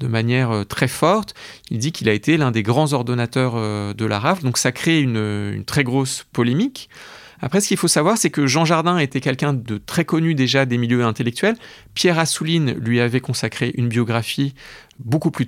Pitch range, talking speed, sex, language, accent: 120-150 Hz, 200 wpm, male, French, French